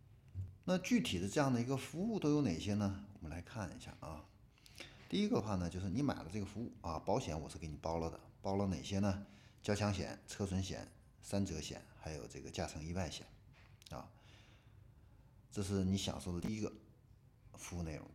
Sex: male